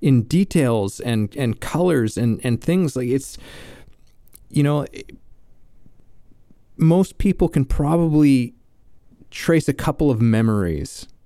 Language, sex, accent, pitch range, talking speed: English, male, American, 115-140 Hz, 110 wpm